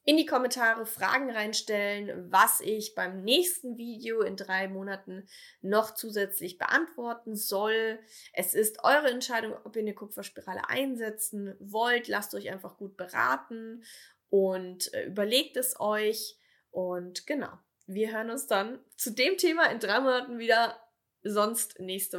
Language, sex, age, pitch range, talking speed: German, female, 20-39, 200-260 Hz, 140 wpm